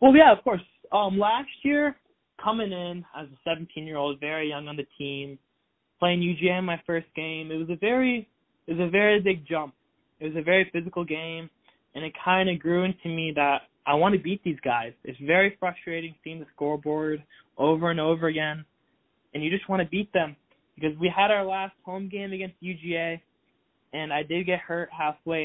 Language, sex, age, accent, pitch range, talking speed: English, male, 20-39, American, 150-190 Hz, 195 wpm